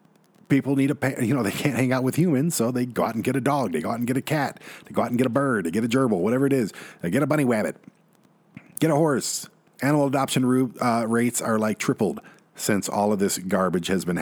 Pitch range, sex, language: 90-125 Hz, male, English